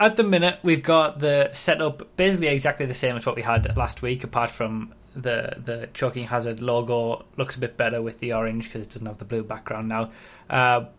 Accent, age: British, 20-39